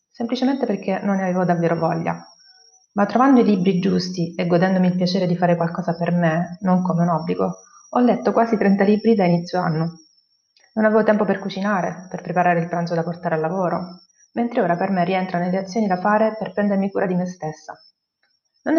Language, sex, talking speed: Italian, female, 200 wpm